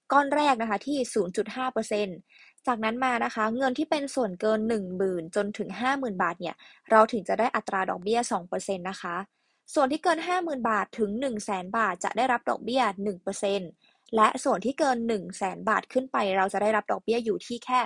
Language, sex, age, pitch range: Thai, female, 20-39, 205-260 Hz